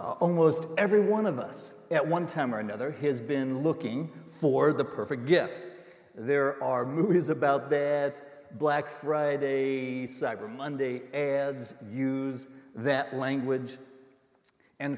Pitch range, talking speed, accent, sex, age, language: 130-160 Hz, 130 wpm, American, male, 50-69, English